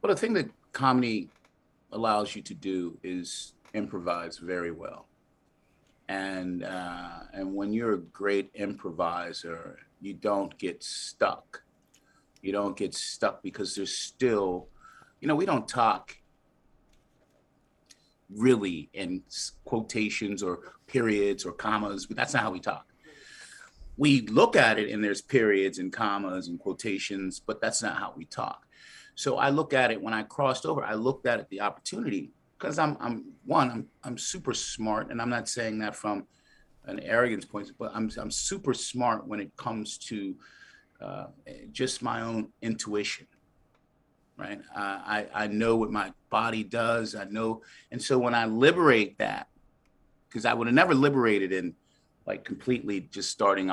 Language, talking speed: English, 155 wpm